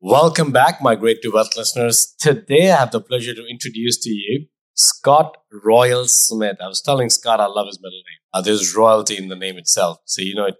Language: English